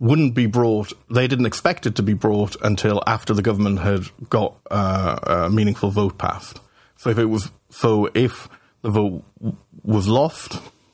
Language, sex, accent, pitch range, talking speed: English, male, British, 100-120 Hz, 165 wpm